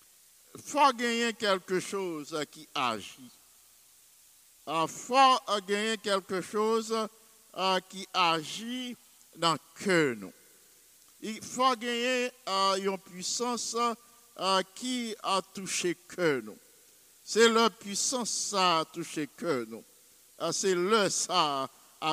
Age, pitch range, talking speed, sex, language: 50-69, 170-220 Hz, 100 wpm, male, English